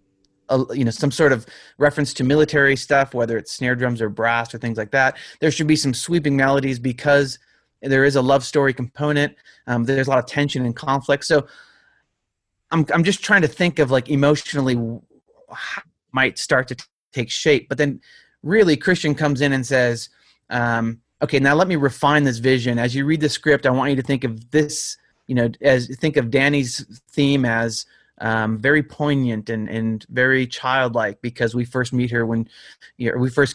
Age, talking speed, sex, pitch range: 30-49, 200 wpm, male, 120-150 Hz